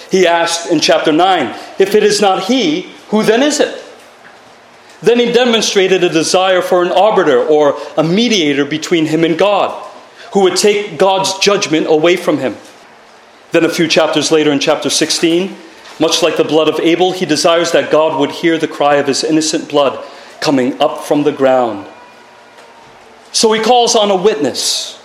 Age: 40-59